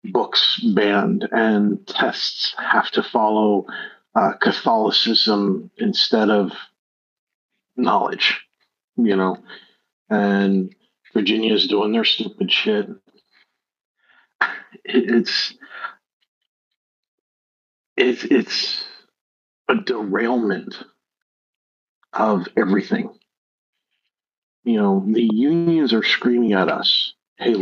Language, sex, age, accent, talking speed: English, male, 50-69, American, 80 wpm